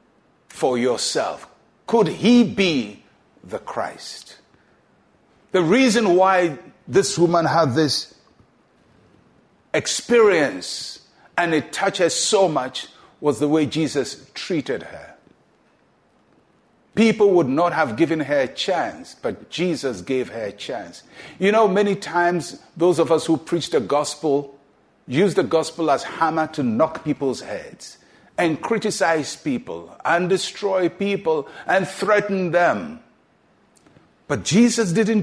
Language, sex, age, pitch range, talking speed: English, male, 50-69, 155-205 Hz, 125 wpm